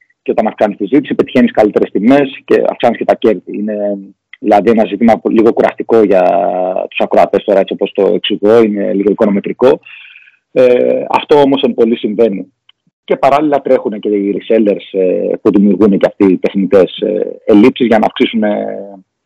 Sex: male